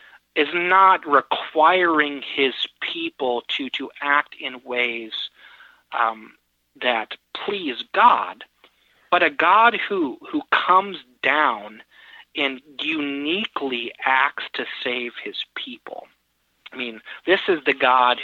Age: 30-49